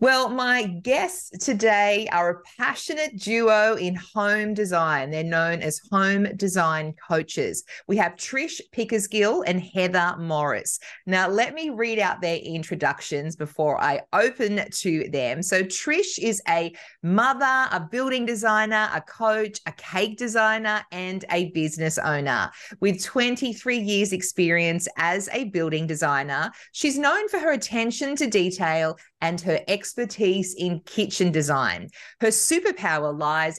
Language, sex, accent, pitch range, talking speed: English, female, Australian, 165-225 Hz, 140 wpm